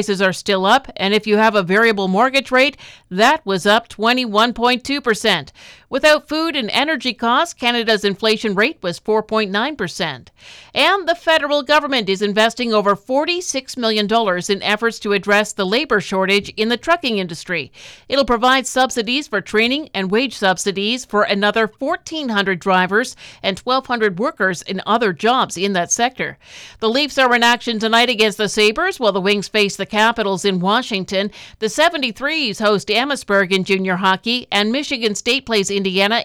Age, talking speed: 50-69, 160 wpm